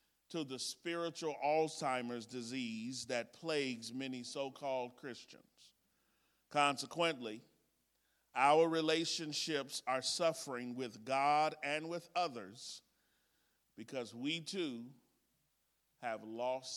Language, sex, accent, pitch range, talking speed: English, male, American, 125-160 Hz, 90 wpm